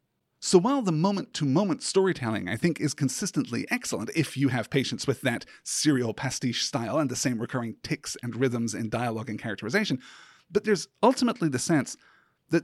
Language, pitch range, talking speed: English, 130-175 Hz, 170 wpm